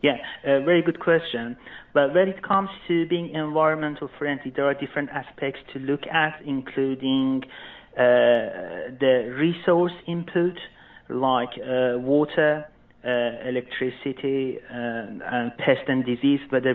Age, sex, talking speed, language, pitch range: 40-59, male, 130 wpm, English, 125-145 Hz